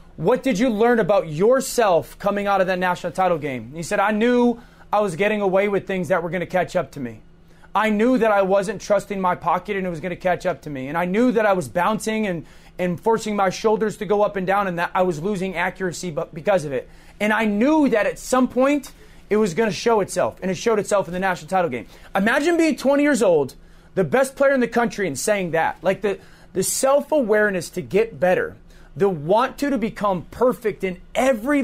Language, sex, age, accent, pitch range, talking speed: English, male, 30-49, American, 180-225 Hz, 235 wpm